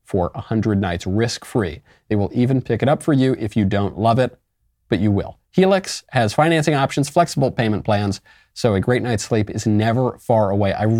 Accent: American